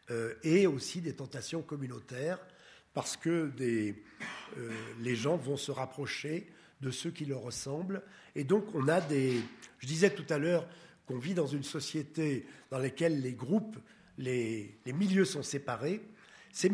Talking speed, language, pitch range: 155 wpm, French, 130-170 Hz